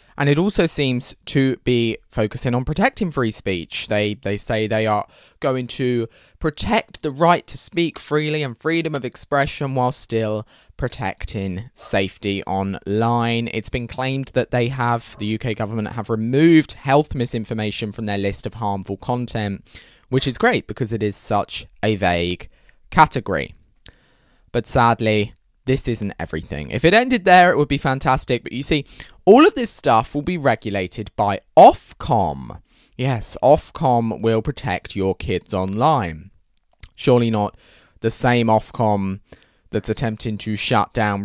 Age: 20-39